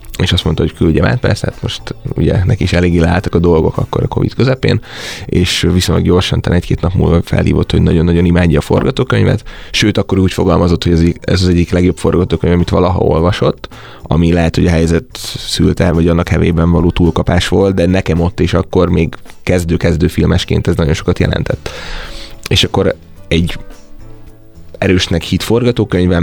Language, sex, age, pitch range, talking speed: Hungarian, male, 20-39, 85-95 Hz, 175 wpm